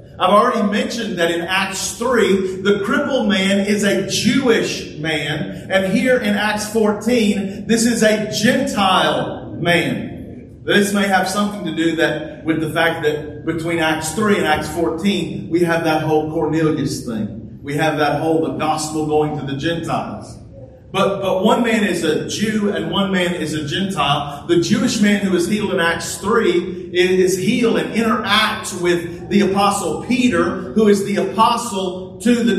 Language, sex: English, male